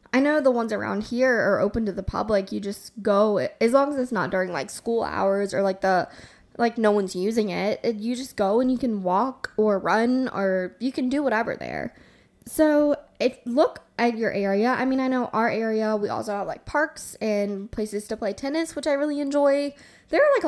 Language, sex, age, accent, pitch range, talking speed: English, female, 10-29, American, 210-270 Hz, 220 wpm